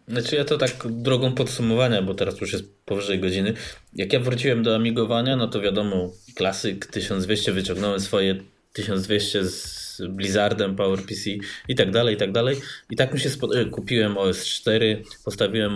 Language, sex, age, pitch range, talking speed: Polish, male, 20-39, 100-120 Hz, 170 wpm